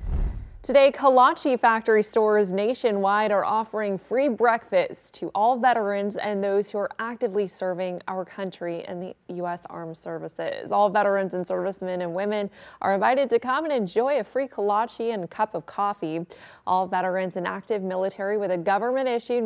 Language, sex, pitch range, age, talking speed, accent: English, female, 185-225 Hz, 20-39, 165 wpm, American